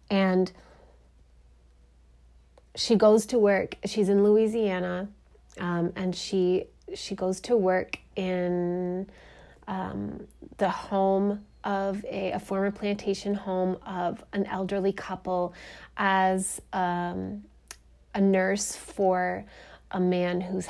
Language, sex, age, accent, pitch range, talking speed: English, female, 30-49, American, 180-205 Hz, 105 wpm